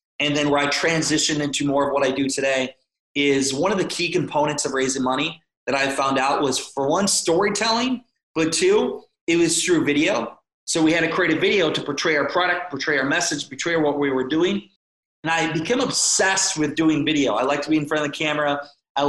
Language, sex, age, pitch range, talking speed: English, male, 20-39, 140-155 Hz, 225 wpm